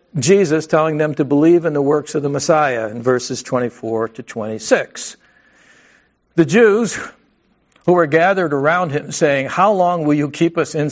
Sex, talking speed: male, 170 wpm